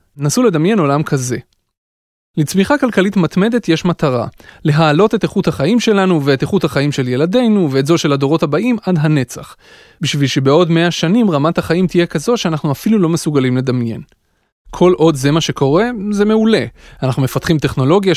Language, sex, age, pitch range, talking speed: Hebrew, male, 30-49, 140-185 Hz, 160 wpm